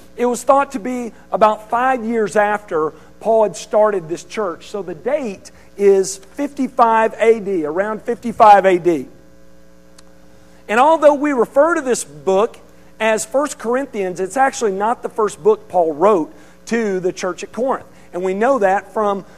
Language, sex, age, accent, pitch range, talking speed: English, male, 50-69, American, 175-240 Hz, 160 wpm